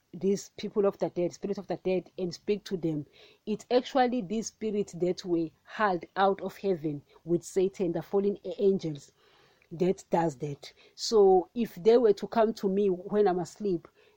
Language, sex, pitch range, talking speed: English, female, 175-205 Hz, 180 wpm